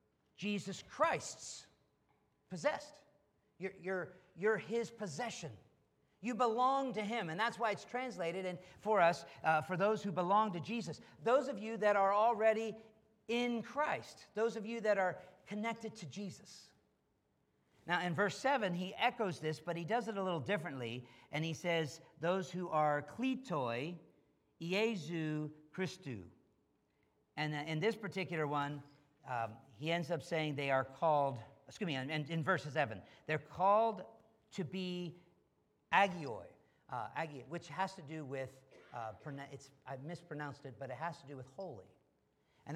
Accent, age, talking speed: American, 50-69, 155 wpm